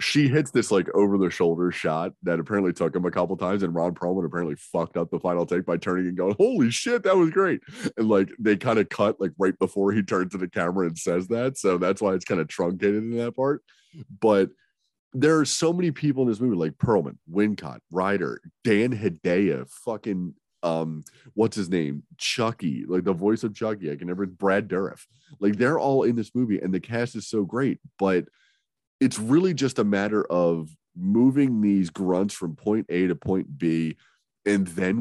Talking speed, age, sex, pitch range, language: 205 wpm, 30-49, male, 90-110 Hz, English